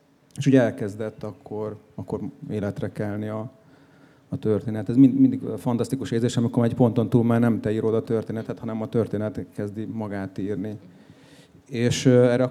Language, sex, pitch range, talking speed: Hungarian, male, 110-130 Hz, 170 wpm